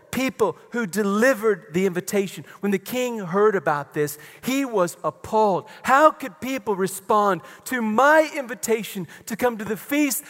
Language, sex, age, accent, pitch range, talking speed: English, male, 40-59, American, 145-225 Hz, 150 wpm